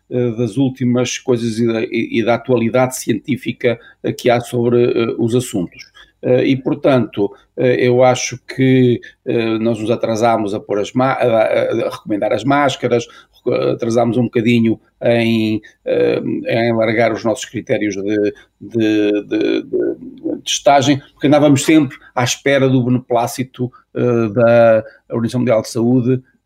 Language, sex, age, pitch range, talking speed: Portuguese, male, 50-69, 110-130 Hz, 120 wpm